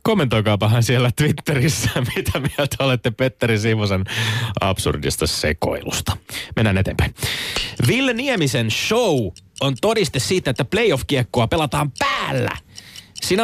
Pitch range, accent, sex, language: 105-150 Hz, native, male, Finnish